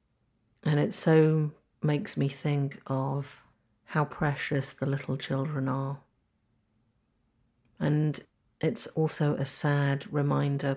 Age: 50-69